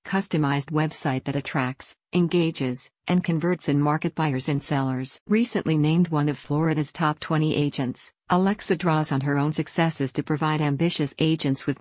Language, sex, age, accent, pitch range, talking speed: English, female, 50-69, American, 145-165 Hz, 160 wpm